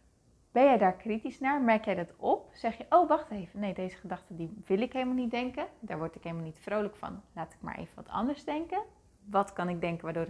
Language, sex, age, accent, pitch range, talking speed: Dutch, female, 30-49, Dutch, 190-245 Hz, 245 wpm